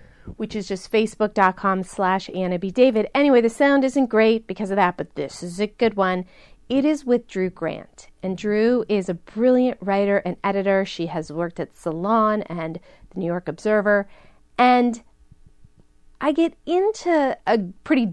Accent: American